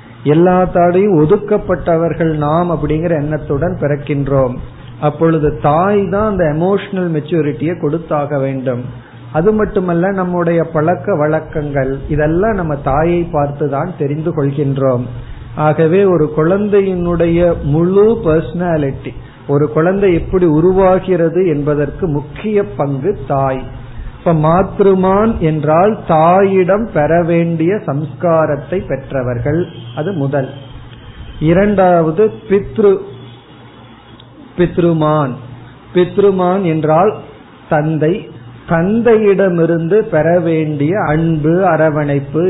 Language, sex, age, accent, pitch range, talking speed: Tamil, male, 50-69, native, 145-180 Hz, 80 wpm